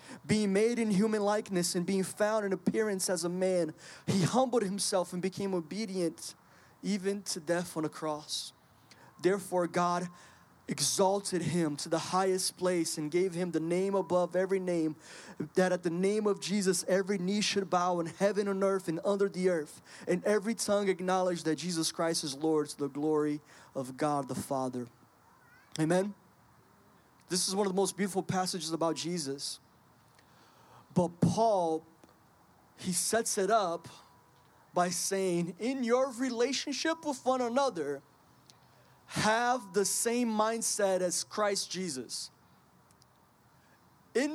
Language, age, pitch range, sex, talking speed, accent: English, 20-39, 175-230 Hz, male, 145 wpm, American